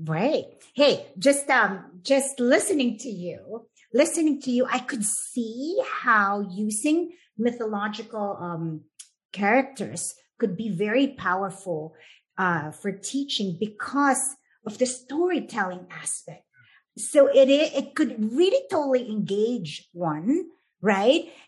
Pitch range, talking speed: 185-265 Hz, 110 wpm